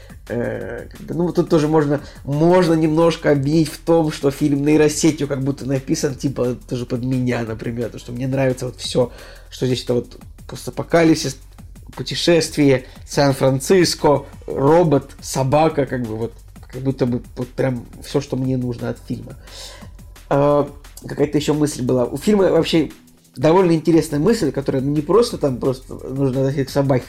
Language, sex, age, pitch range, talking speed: Russian, male, 20-39, 125-150 Hz, 155 wpm